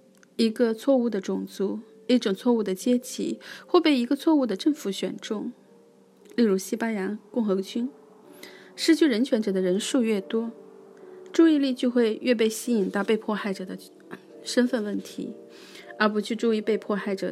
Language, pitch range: Chinese, 190-245 Hz